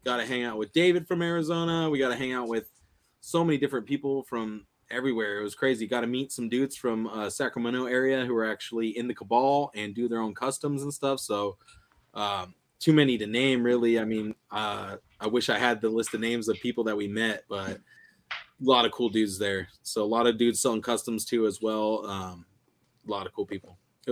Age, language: 20-39, English